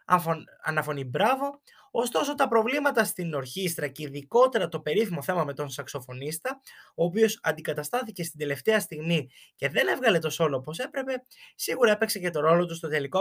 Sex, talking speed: male, 165 wpm